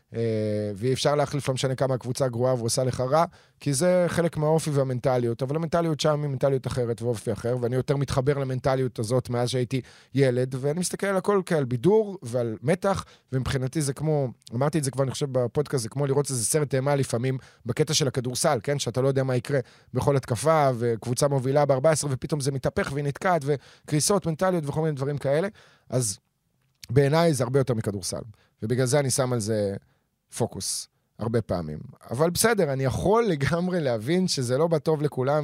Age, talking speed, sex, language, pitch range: 30-49, 145 wpm, male, Hebrew, 120-150 Hz